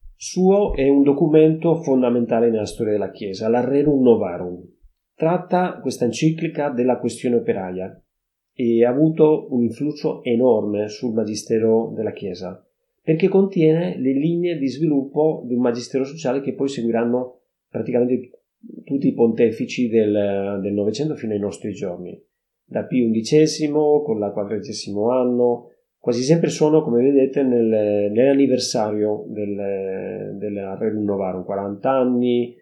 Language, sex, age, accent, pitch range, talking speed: Italian, male, 30-49, native, 110-145 Hz, 130 wpm